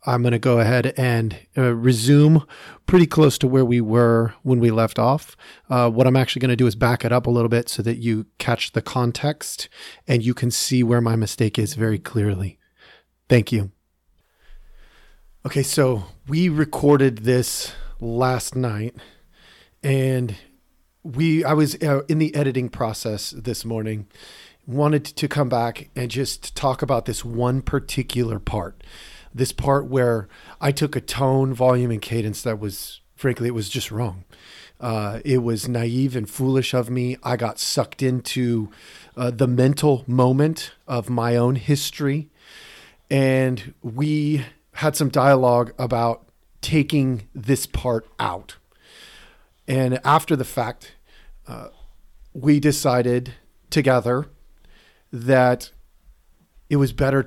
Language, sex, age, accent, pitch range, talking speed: English, male, 40-59, American, 115-135 Hz, 145 wpm